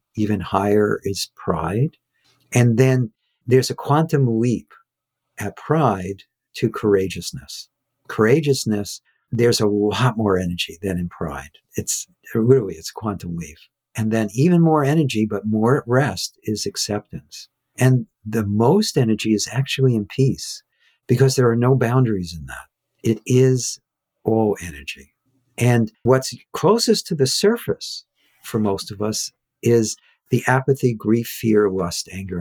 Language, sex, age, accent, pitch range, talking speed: English, male, 50-69, American, 105-135 Hz, 140 wpm